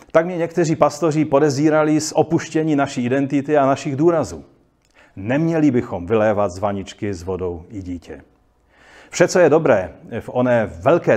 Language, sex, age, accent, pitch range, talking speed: Czech, male, 40-59, native, 115-150 Hz, 150 wpm